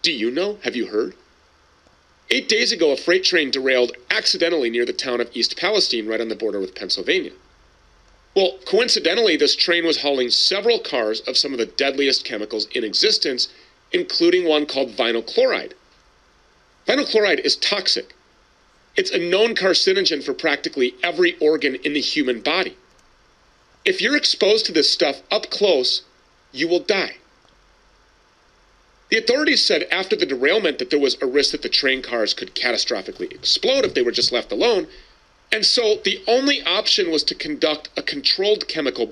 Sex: male